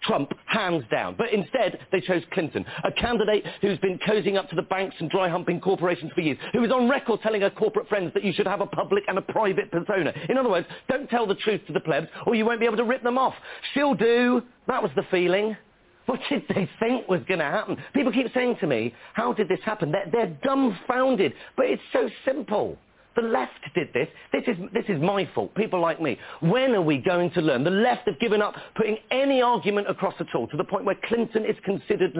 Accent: British